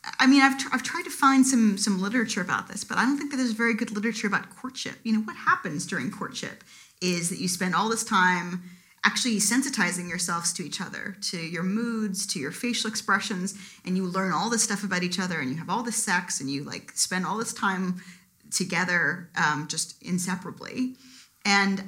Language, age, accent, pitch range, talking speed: English, 40-59, American, 180-225 Hz, 210 wpm